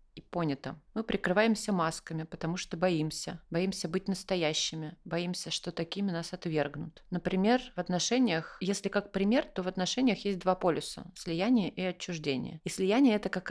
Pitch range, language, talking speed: 165-195 Hz, Russian, 155 wpm